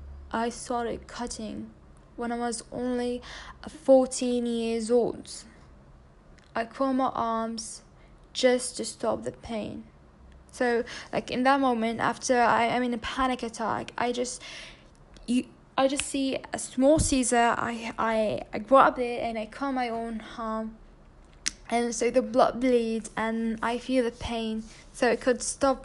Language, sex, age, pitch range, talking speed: English, female, 10-29, 215-245 Hz, 150 wpm